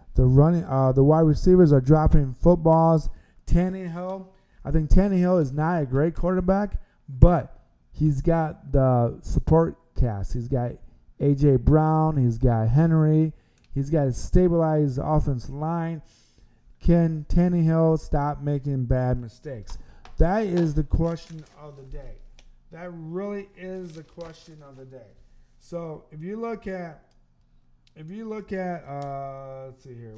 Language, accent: English, American